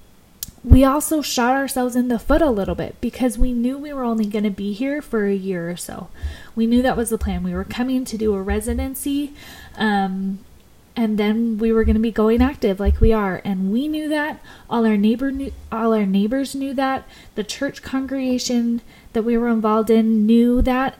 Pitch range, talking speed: 205-265 Hz, 210 wpm